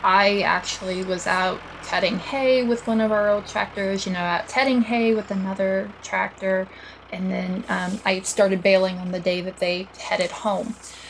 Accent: American